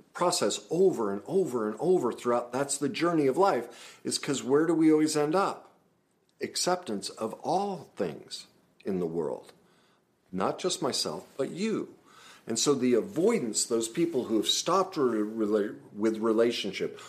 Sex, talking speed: male, 150 wpm